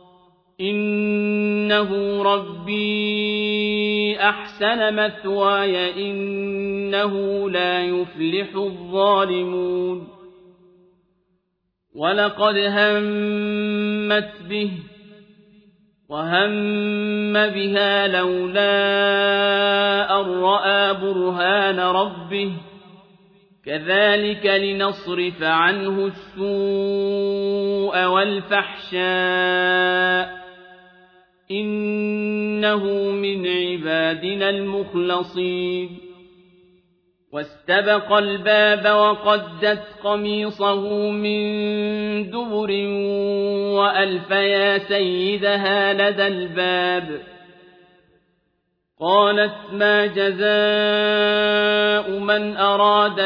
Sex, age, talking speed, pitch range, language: male, 40-59, 50 wpm, 180-210 Hz, Arabic